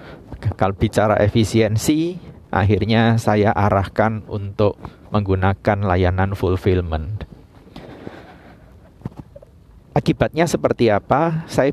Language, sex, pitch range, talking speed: Indonesian, male, 95-125 Hz, 70 wpm